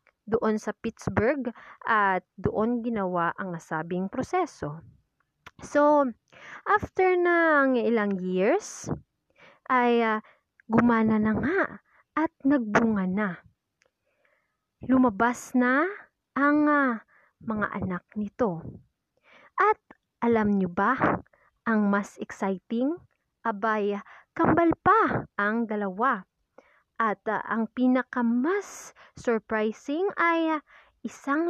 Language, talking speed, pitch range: Filipino, 95 wpm, 205-280 Hz